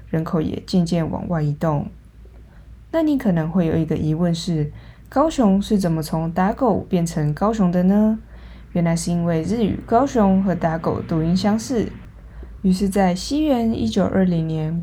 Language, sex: Chinese, female